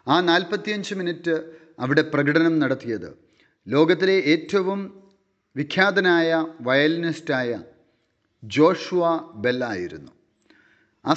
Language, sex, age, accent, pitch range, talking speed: Malayalam, male, 40-59, native, 135-175 Hz, 70 wpm